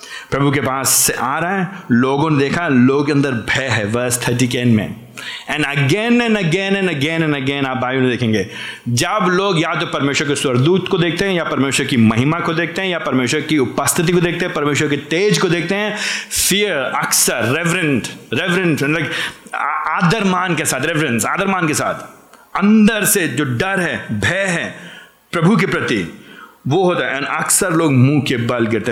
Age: 30-49